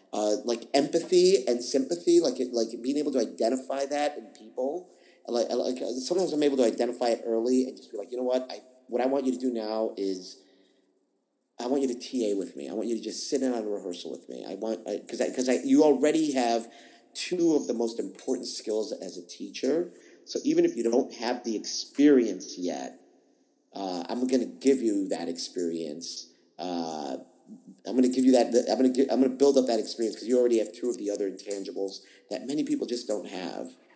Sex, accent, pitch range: male, American, 100-135 Hz